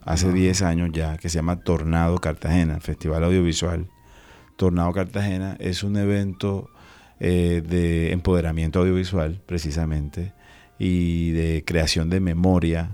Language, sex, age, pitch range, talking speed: Spanish, male, 30-49, 80-90 Hz, 120 wpm